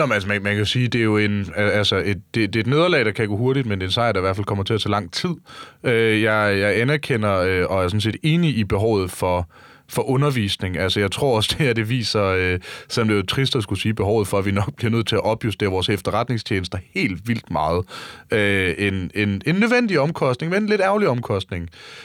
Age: 30-49